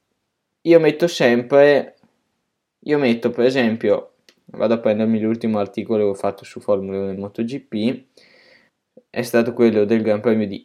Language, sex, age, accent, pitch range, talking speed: Italian, male, 10-29, native, 100-130 Hz, 150 wpm